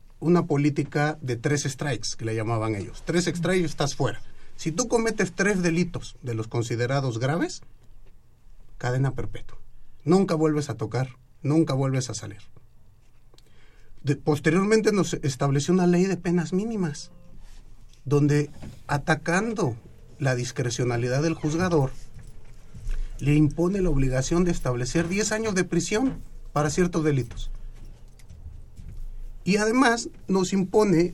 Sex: male